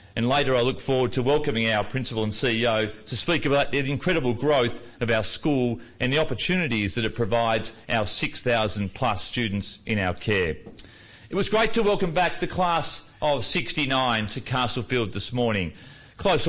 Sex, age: male, 40-59